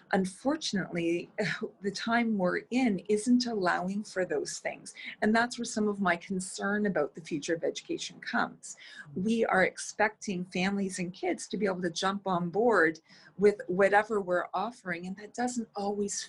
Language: English